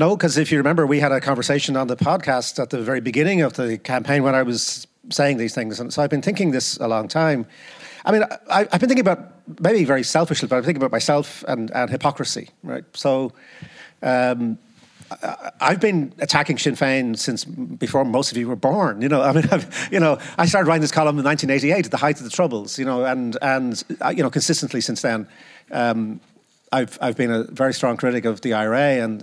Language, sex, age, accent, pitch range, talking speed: English, male, 40-59, British, 125-160 Hz, 225 wpm